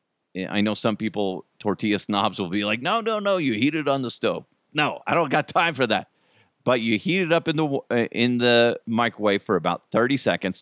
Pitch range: 100-130 Hz